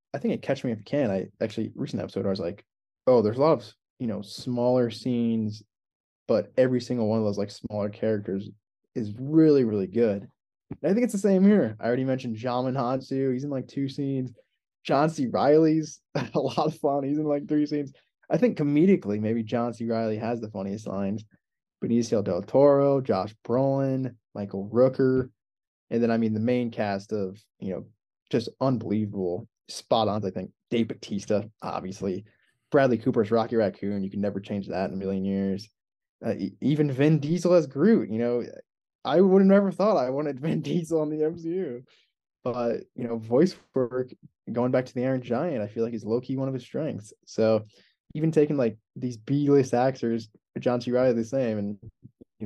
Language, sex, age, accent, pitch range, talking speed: English, male, 20-39, American, 105-140 Hz, 195 wpm